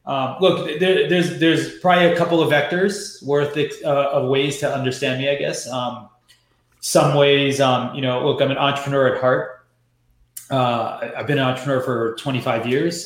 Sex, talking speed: male, 170 wpm